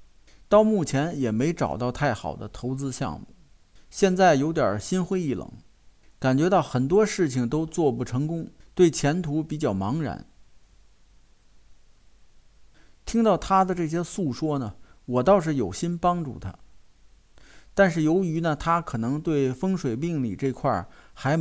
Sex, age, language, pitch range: male, 50-69, Chinese, 115-170 Hz